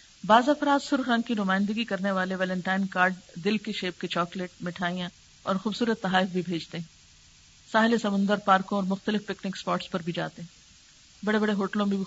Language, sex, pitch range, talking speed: Urdu, female, 180-235 Hz, 190 wpm